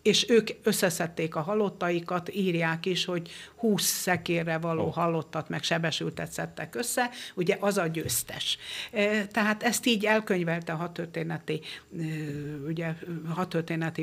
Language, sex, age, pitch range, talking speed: Hungarian, female, 60-79, 160-185 Hz, 110 wpm